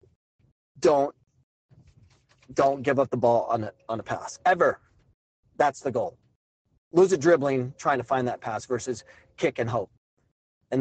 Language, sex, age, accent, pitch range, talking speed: English, male, 30-49, American, 120-165 Hz, 155 wpm